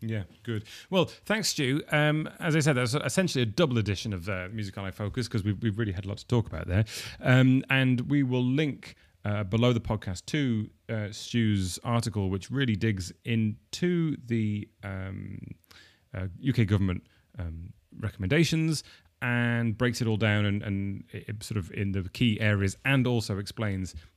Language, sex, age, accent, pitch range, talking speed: English, male, 30-49, British, 100-125 Hz, 175 wpm